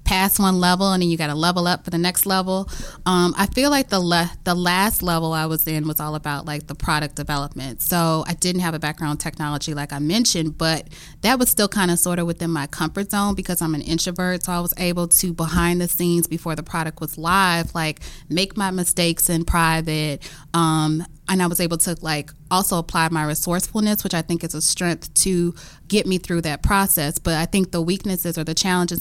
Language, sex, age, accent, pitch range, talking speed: English, female, 20-39, American, 160-180 Hz, 230 wpm